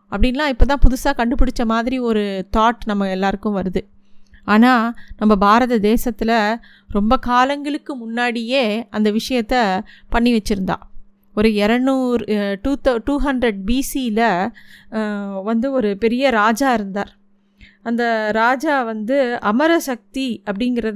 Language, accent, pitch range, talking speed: Tamil, native, 215-270 Hz, 110 wpm